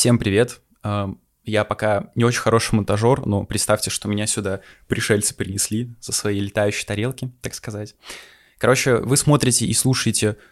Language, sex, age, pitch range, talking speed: Russian, male, 20-39, 105-135 Hz, 150 wpm